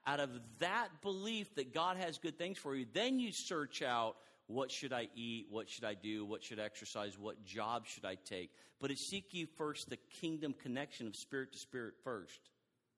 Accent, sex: American, male